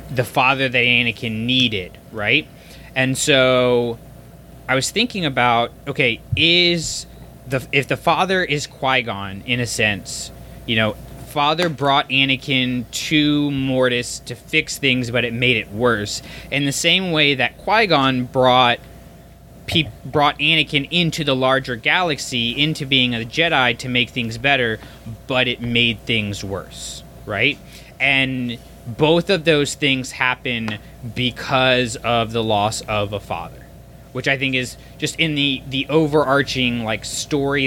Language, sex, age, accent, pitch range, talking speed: English, male, 20-39, American, 115-140 Hz, 140 wpm